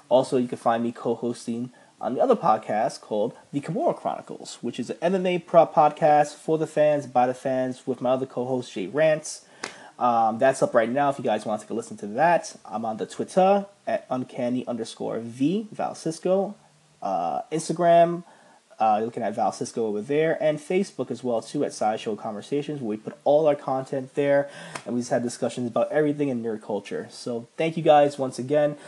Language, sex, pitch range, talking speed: English, male, 125-155 Hz, 195 wpm